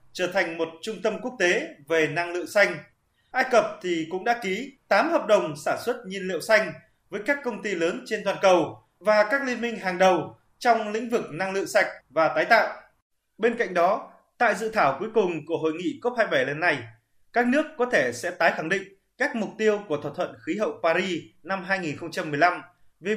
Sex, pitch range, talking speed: male, 165-230 Hz, 210 wpm